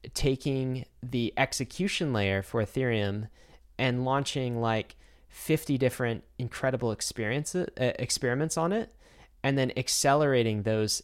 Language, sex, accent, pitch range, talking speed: English, male, American, 115-140 Hz, 115 wpm